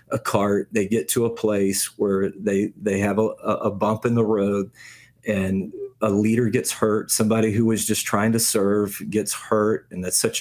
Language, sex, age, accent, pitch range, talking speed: English, male, 40-59, American, 100-115 Hz, 195 wpm